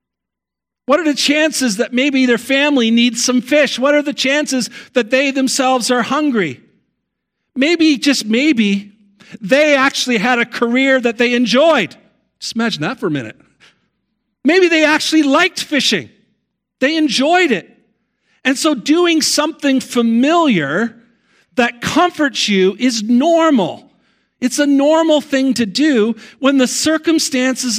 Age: 50-69